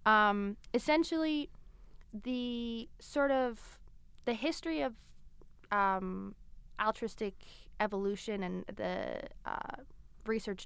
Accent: American